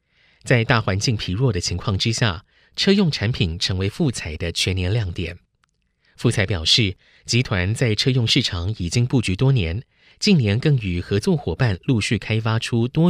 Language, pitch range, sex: Chinese, 90-130 Hz, male